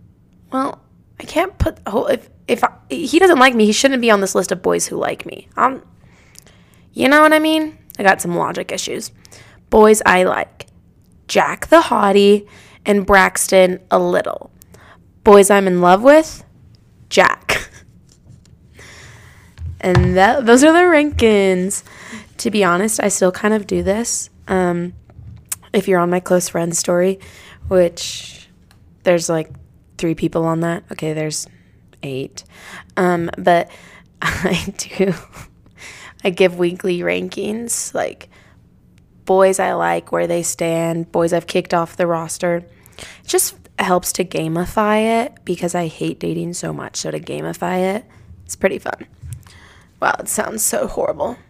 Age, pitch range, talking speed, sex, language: 20-39, 170-210 Hz, 150 wpm, female, English